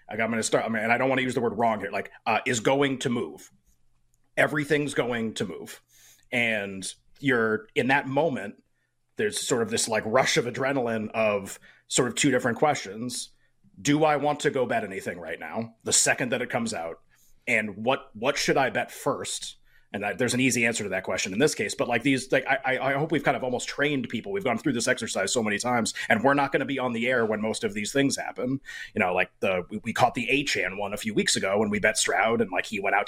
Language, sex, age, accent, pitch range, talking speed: English, male, 30-49, American, 110-140 Hz, 255 wpm